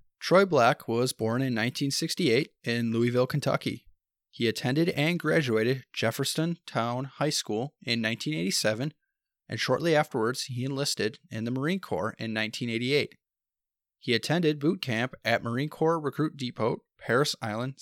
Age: 20-39